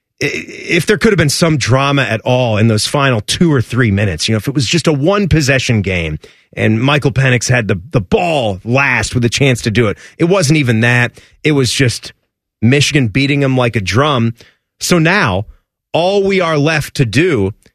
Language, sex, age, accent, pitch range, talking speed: English, male, 30-49, American, 130-200 Hz, 205 wpm